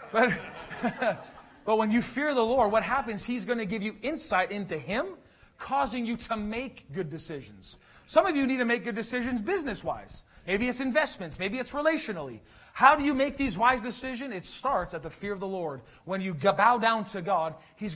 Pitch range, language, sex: 175-230 Hz, English, male